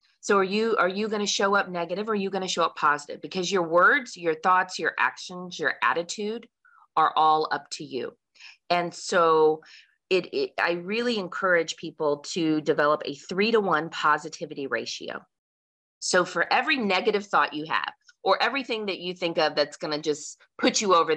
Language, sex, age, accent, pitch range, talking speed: English, female, 30-49, American, 160-215 Hz, 195 wpm